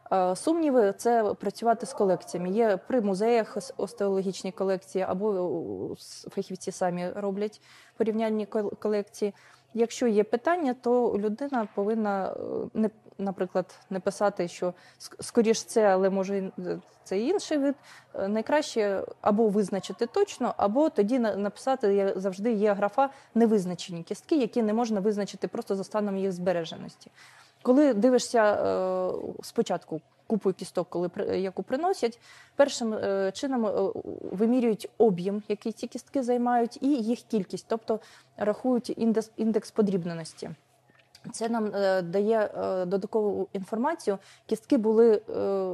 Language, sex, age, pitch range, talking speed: Ukrainian, female, 20-39, 195-235 Hz, 115 wpm